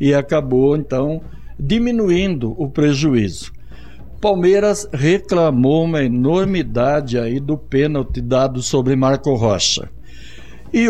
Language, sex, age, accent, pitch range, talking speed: Portuguese, male, 60-79, Brazilian, 125-160 Hz, 100 wpm